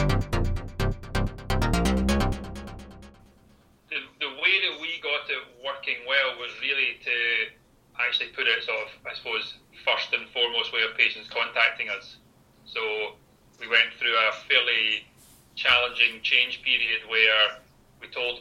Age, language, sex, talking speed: 30-49, English, male, 125 wpm